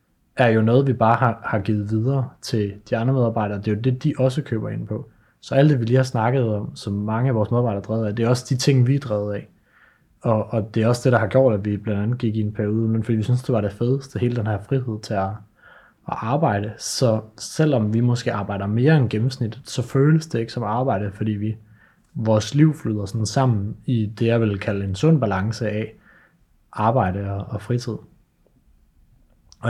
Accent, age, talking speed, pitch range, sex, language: native, 30-49, 230 wpm, 105-130 Hz, male, Danish